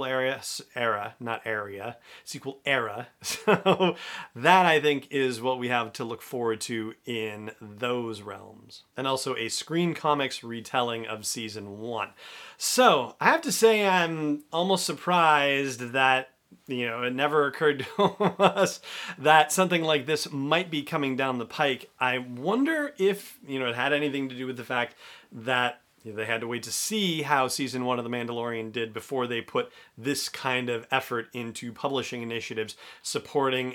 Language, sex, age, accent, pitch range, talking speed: English, male, 40-59, American, 115-145 Hz, 165 wpm